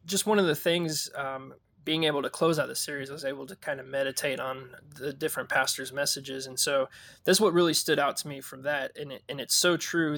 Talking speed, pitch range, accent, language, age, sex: 250 wpm, 135-155 Hz, American, English, 20-39, male